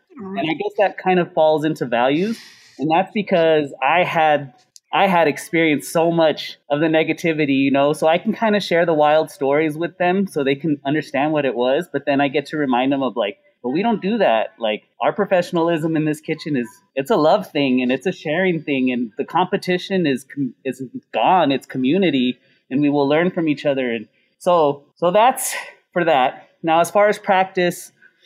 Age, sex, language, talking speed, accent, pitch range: 30-49, male, English, 210 wpm, American, 140-180 Hz